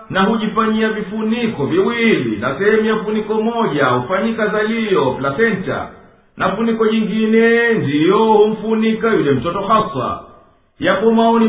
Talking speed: 105 wpm